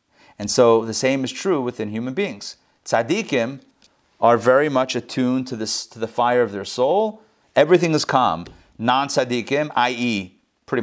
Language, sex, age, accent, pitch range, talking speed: English, male, 30-49, American, 110-145 Hz, 150 wpm